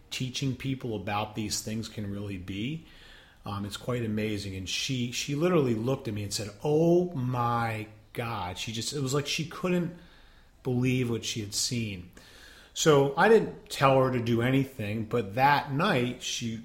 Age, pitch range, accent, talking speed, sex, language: 40-59, 105-135 Hz, American, 175 wpm, male, English